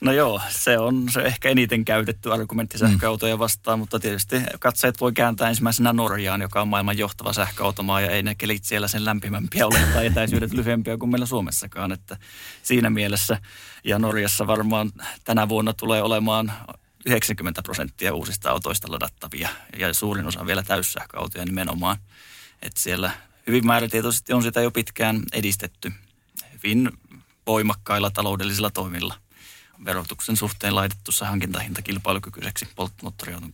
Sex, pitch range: male, 100-115 Hz